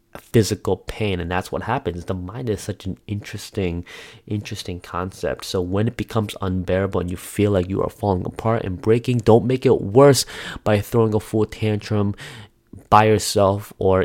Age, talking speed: 20-39, 175 wpm